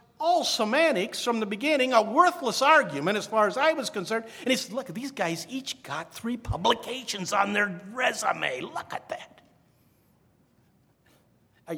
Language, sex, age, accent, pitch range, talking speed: English, male, 50-69, American, 110-155 Hz, 160 wpm